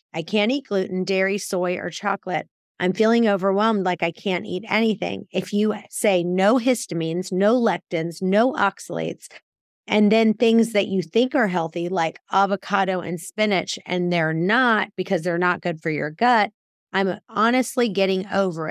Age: 30-49